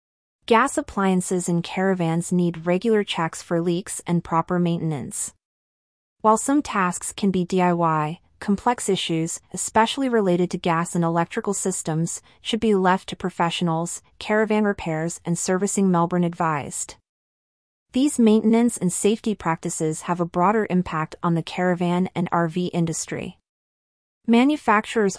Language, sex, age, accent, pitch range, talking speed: English, female, 30-49, American, 170-205 Hz, 130 wpm